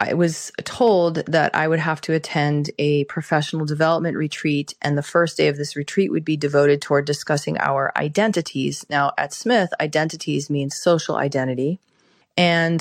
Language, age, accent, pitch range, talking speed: English, 30-49, American, 145-175 Hz, 165 wpm